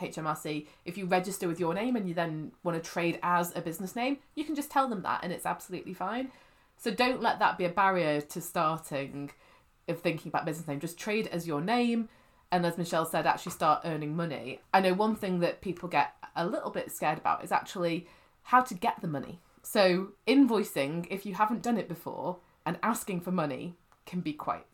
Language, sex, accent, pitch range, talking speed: English, female, British, 165-225 Hz, 215 wpm